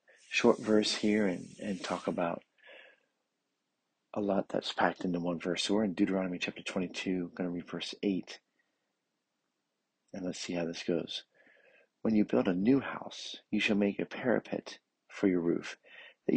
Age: 40-59